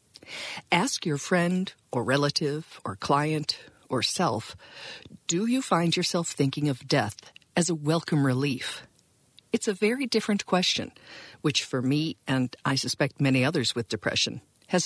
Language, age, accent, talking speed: English, 50-69, American, 145 wpm